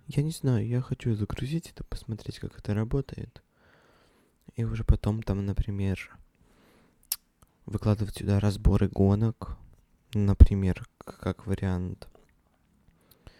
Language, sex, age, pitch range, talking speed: Russian, male, 20-39, 95-115 Hz, 105 wpm